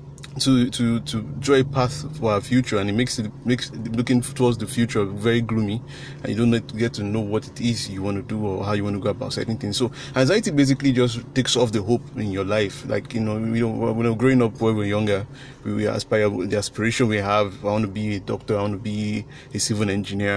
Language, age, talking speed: English, 20-39, 250 wpm